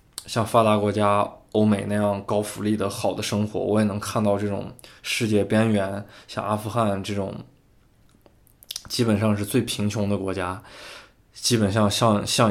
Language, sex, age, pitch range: Chinese, male, 20-39, 100-115 Hz